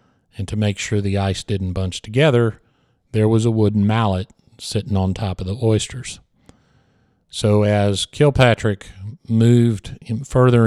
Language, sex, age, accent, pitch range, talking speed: English, male, 50-69, American, 100-120 Hz, 140 wpm